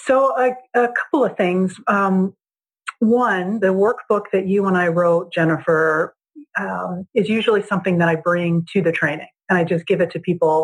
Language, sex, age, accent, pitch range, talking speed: English, female, 40-59, American, 165-205 Hz, 185 wpm